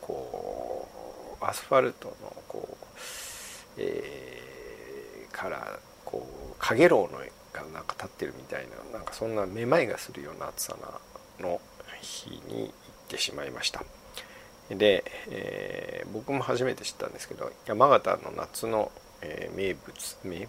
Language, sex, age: Japanese, male, 50-69